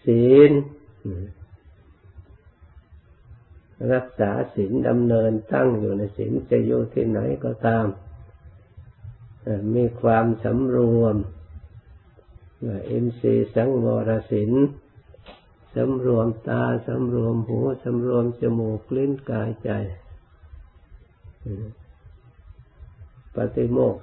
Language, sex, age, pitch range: Thai, male, 50-69, 100-120 Hz